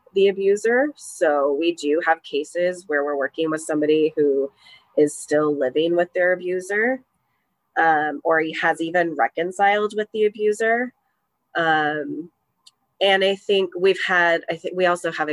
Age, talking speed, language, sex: 20-39, 150 wpm, English, female